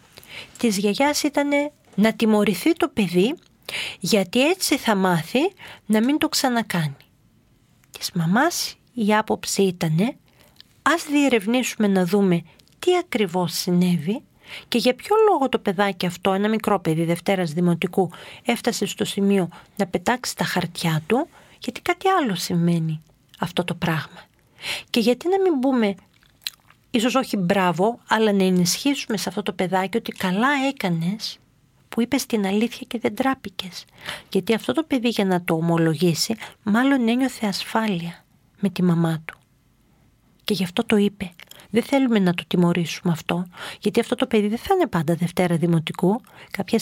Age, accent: 40-59, native